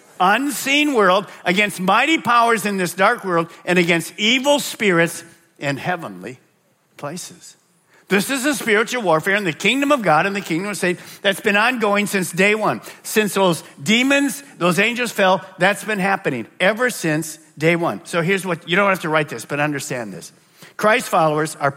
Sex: male